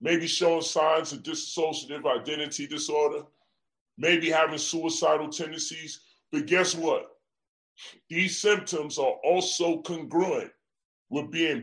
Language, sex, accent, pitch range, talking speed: English, female, American, 150-235 Hz, 110 wpm